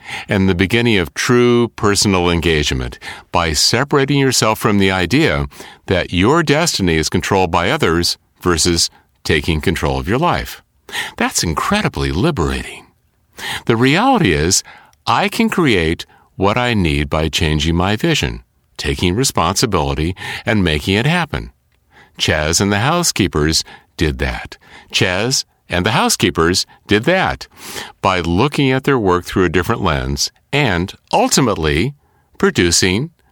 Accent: American